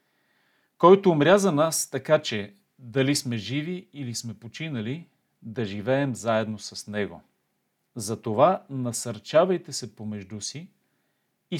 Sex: male